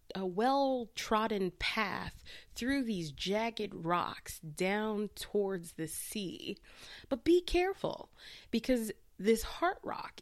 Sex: female